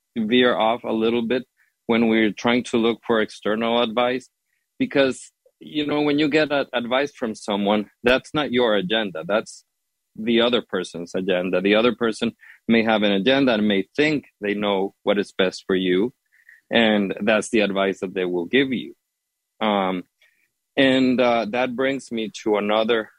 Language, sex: English, male